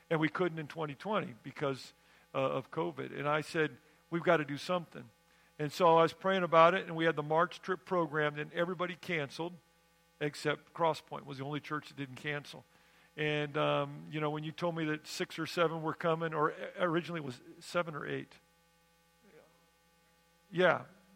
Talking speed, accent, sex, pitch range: 185 wpm, American, male, 145-170 Hz